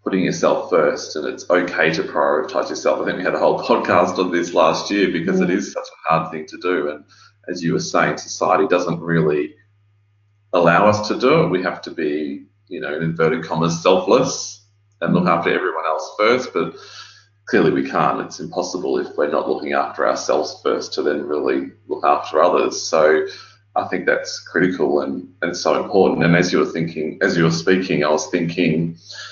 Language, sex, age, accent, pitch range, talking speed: English, male, 30-49, Australian, 85-105 Hz, 205 wpm